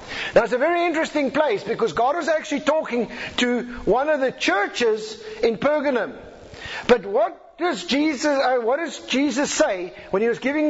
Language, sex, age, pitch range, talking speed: English, male, 50-69, 240-315 Hz, 175 wpm